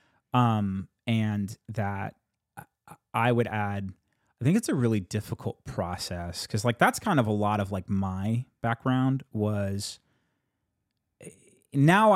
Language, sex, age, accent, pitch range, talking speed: English, male, 30-49, American, 100-130 Hz, 130 wpm